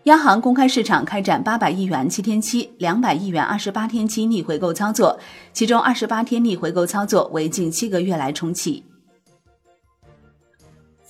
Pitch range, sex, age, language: 180-250 Hz, female, 30-49, Chinese